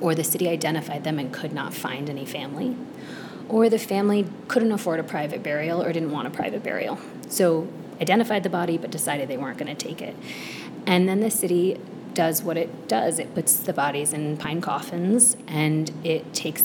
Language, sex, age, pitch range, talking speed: English, female, 30-49, 155-180 Hz, 195 wpm